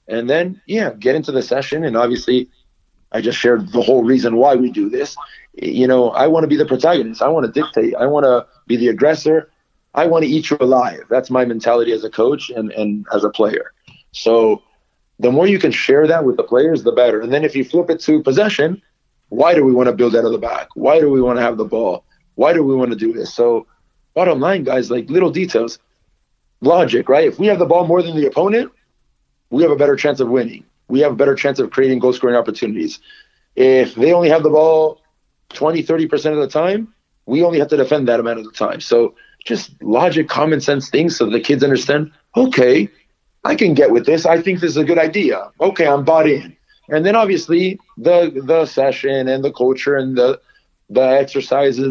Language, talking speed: English, 225 wpm